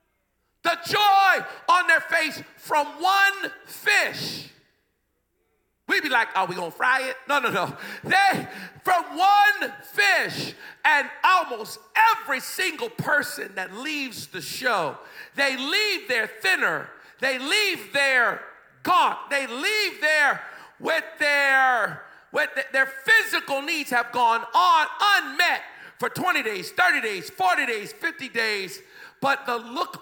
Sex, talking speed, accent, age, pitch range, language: male, 130 wpm, American, 50-69, 235-390 Hz, English